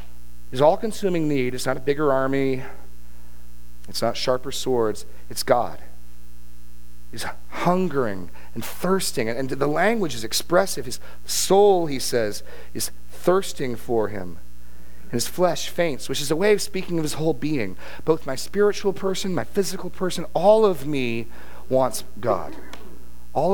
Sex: male